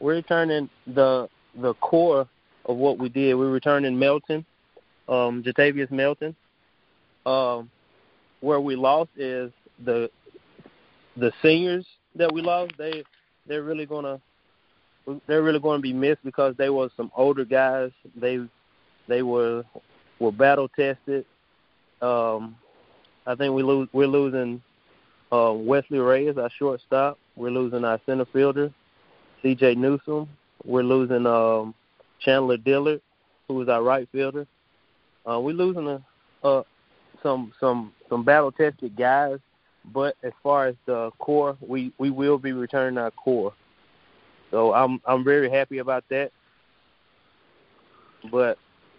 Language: English